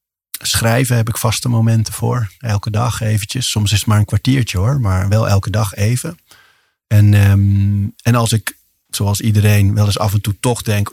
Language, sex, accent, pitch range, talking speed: Dutch, male, Dutch, 100-115 Hz, 185 wpm